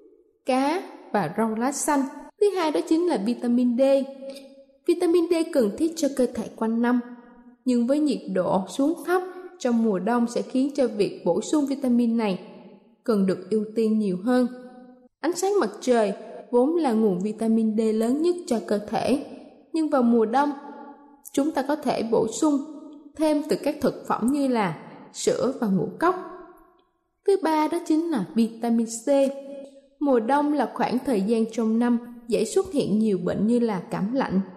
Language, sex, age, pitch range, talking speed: Vietnamese, female, 20-39, 225-300 Hz, 180 wpm